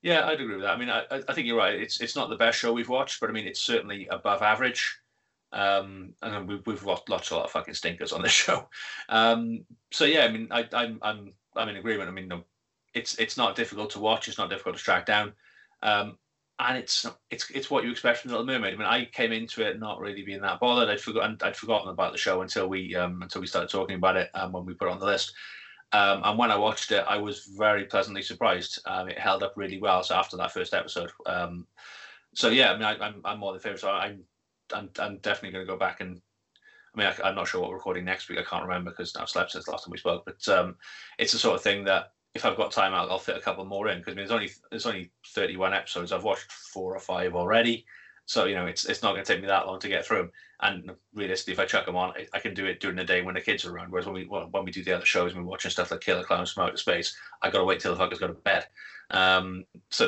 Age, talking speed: 30-49, 280 wpm